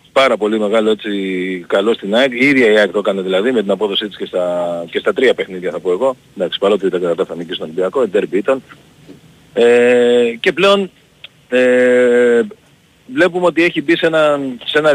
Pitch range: 105-145 Hz